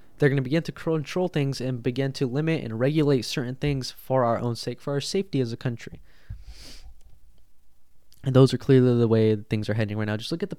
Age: 10-29